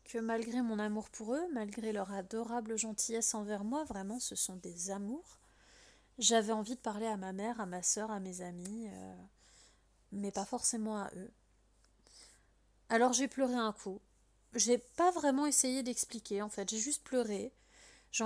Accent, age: French, 30-49